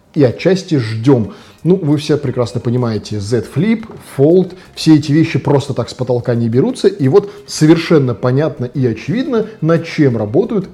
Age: 20-39